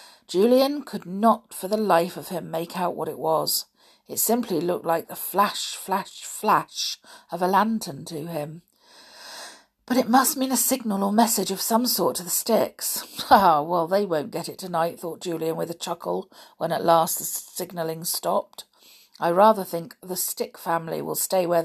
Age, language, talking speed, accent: 50-69, English, 185 wpm, British